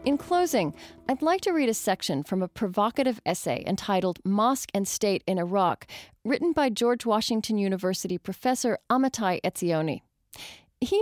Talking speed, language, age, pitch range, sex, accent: 145 wpm, English, 30-49, 185-250 Hz, female, American